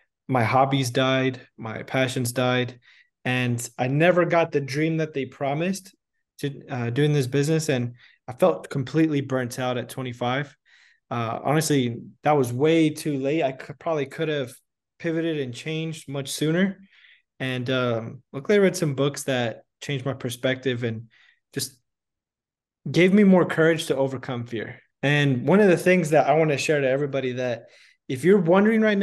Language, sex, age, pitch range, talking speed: English, male, 20-39, 130-160 Hz, 165 wpm